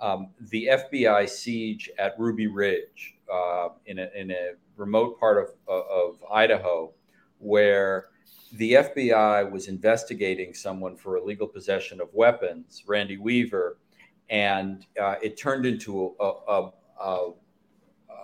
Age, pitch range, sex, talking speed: 50-69, 95-120 Hz, male, 130 wpm